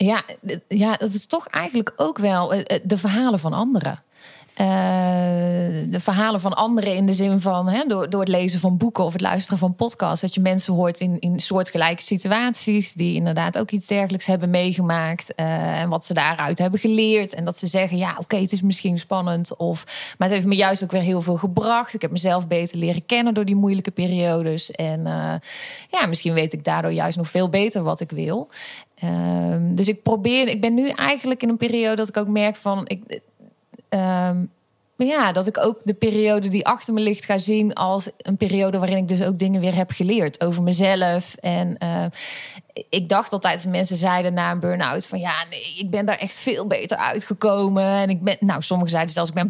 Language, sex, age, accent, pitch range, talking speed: Dutch, female, 20-39, Dutch, 175-210 Hz, 210 wpm